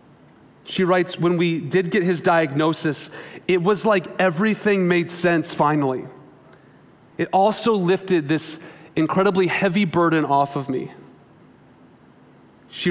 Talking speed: 120 wpm